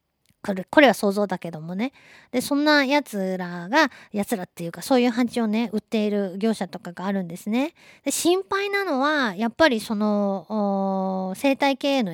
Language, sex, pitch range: Japanese, female, 185-250 Hz